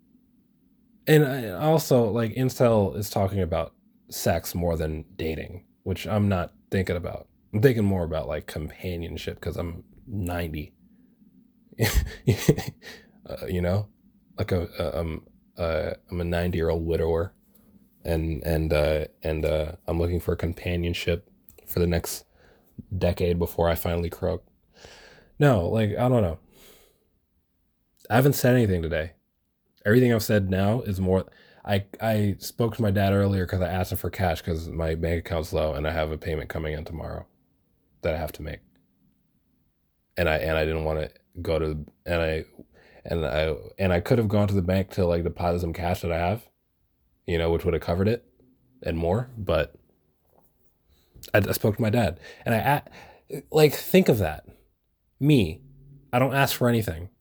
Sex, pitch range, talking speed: male, 85-115 Hz, 170 wpm